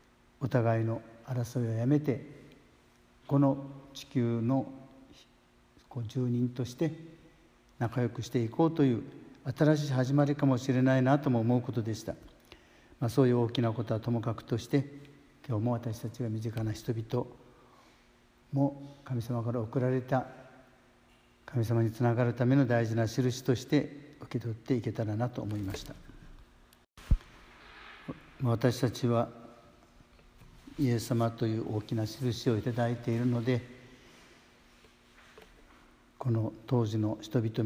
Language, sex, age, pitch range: Japanese, male, 60-79, 115-135 Hz